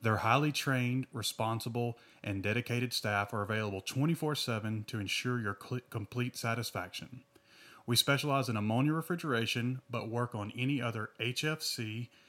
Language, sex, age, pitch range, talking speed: English, male, 30-49, 110-135 Hz, 125 wpm